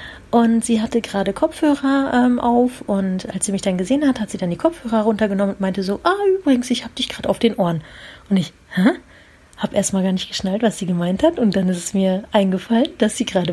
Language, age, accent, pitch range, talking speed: German, 40-59, German, 195-250 Hz, 235 wpm